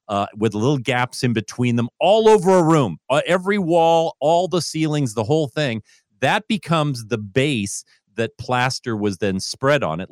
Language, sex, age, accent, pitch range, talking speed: English, male, 40-59, American, 100-150 Hz, 185 wpm